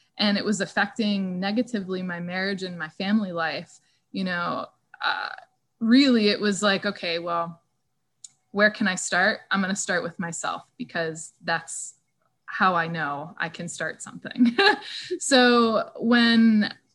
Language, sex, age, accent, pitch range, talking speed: English, female, 20-39, American, 175-230 Hz, 145 wpm